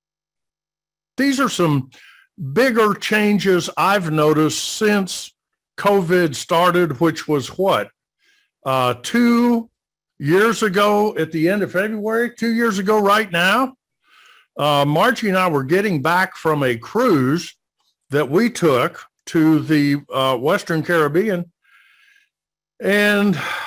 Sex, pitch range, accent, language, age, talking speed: male, 155-215 Hz, American, English, 60-79, 115 wpm